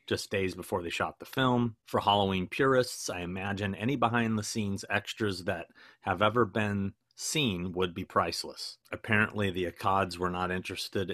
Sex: male